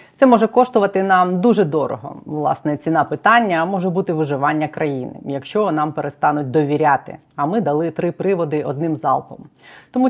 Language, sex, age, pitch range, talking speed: Ukrainian, female, 20-39, 150-190 Hz, 150 wpm